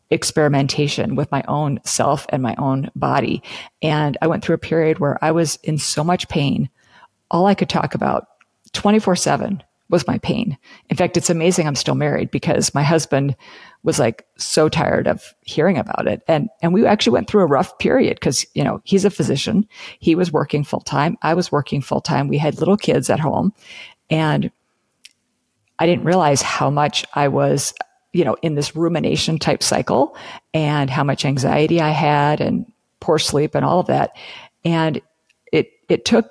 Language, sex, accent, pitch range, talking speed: English, female, American, 145-175 Hz, 185 wpm